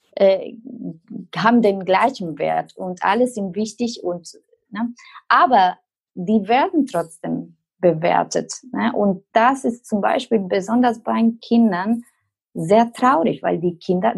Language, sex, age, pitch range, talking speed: German, female, 20-39, 175-245 Hz, 125 wpm